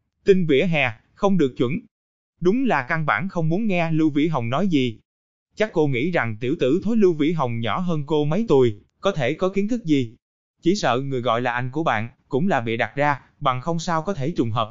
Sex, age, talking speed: male, 20-39, 240 wpm